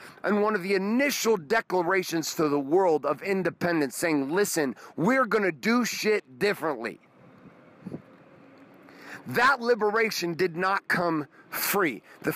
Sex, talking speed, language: male, 125 wpm, English